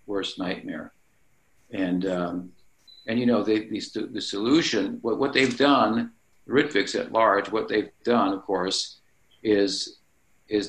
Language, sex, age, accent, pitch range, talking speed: English, male, 50-69, American, 95-125 Hz, 140 wpm